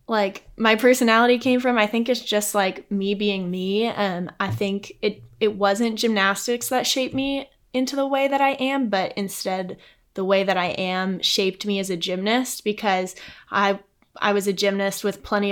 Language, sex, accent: English, female, American